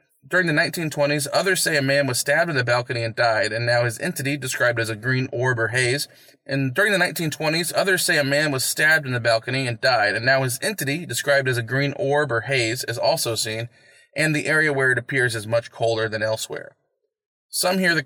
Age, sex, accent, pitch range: 20-39, male, American, 120-150 Hz